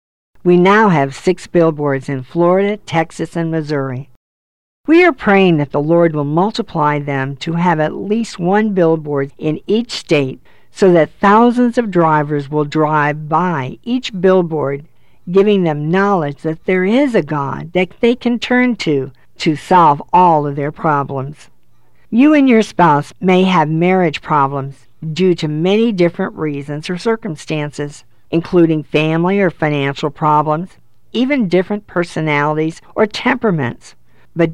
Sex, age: female, 50-69